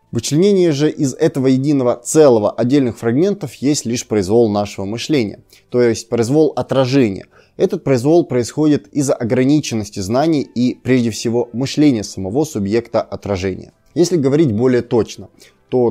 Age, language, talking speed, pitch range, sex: 20-39, Russian, 130 wpm, 110-150 Hz, male